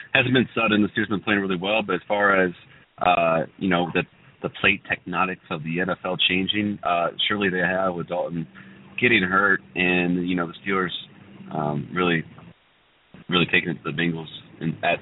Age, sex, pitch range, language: 30-49, male, 90-125 Hz, English